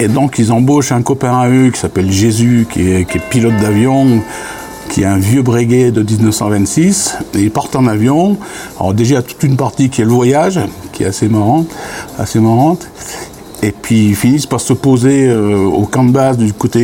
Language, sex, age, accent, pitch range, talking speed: French, male, 60-79, French, 105-135 Hz, 215 wpm